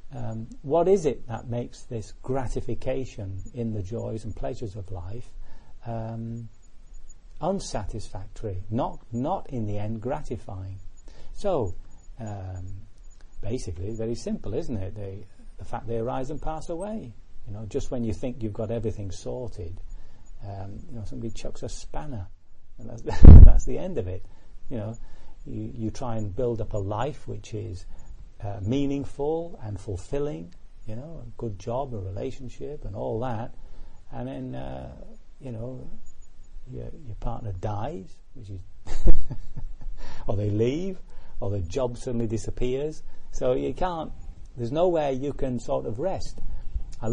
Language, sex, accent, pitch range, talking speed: English, male, British, 95-125 Hz, 150 wpm